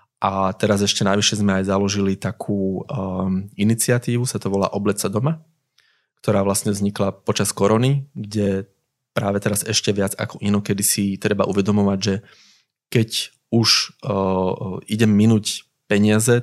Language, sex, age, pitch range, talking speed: Slovak, male, 20-39, 100-110 Hz, 130 wpm